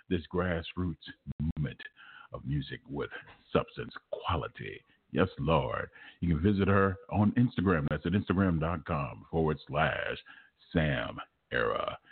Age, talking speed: 50-69, 115 wpm